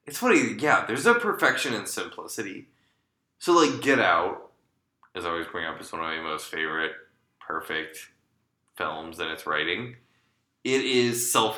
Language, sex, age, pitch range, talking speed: English, male, 20-39, 90-120 Hz, 160 wpm